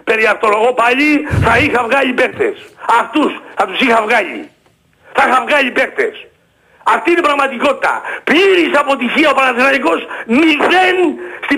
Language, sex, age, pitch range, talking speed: Greek, male, 60-79, 275-345 Hz, 135 wpm